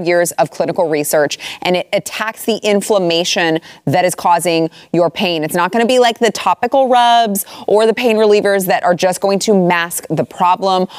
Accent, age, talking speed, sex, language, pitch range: American, 30-49, 190 wpm, female, English, 160-200 Hz